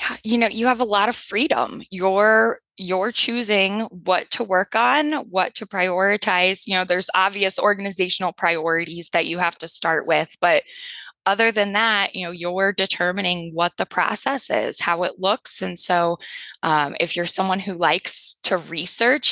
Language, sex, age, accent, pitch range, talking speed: English, female, 20-39, American, 170-205 Hz, 170 wpm